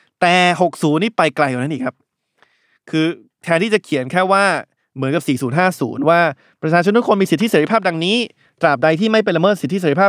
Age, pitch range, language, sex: 20-39, 140-180 Hz, Thai, male